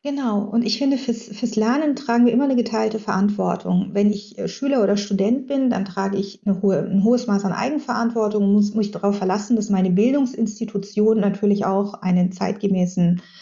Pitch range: 200-230 Hz